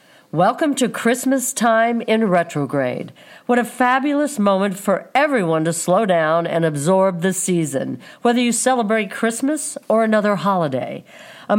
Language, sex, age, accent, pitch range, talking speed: English, female, 50-69, American, 175-235 Hz, 140 wpm